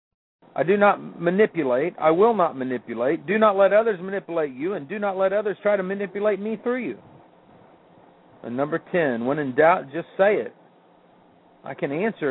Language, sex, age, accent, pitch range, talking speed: English, male, 50-69, American, 135-205 Hz, 180 wpm